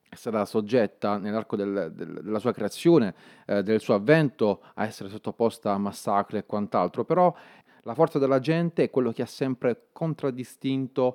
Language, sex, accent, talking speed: Italian, male, native, 150 wpm